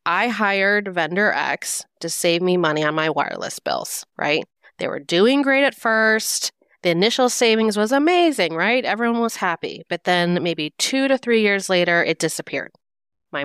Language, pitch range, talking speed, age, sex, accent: English, 160-215 Hz, 175 wpm, 30-49, female, American